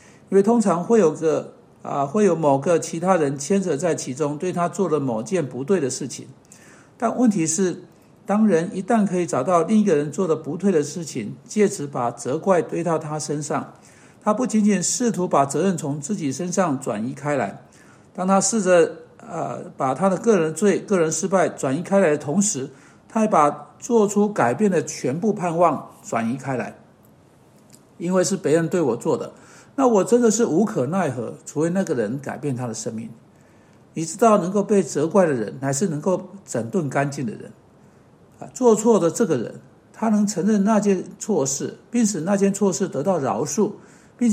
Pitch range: 155-210 Hz